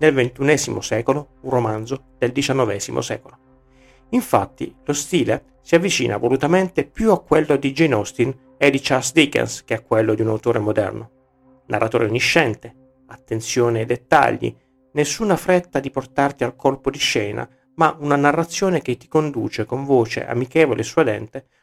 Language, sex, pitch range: Italian, male, 115-155 Hz